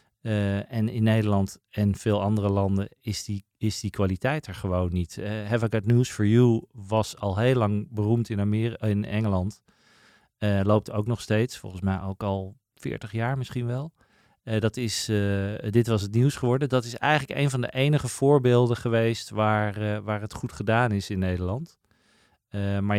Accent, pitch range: Dutch, 105-120 Hz